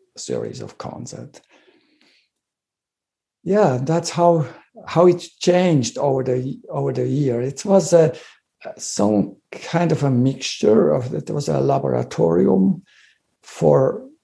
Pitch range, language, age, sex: 125-170 Hz, German, 60-79, male